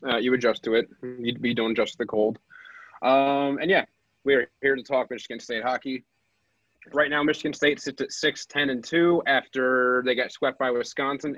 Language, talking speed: English, 200 wpm